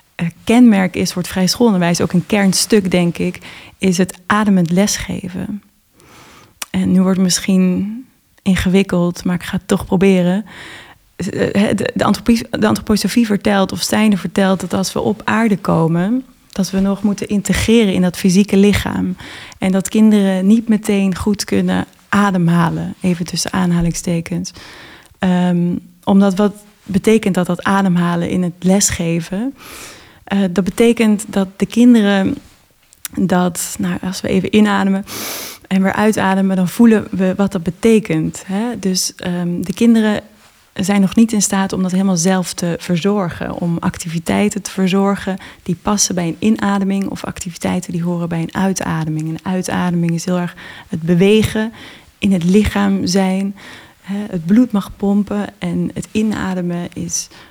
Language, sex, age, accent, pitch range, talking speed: Dutch, female, 30-49, Dutch, 180-205 Hz, 145 wpm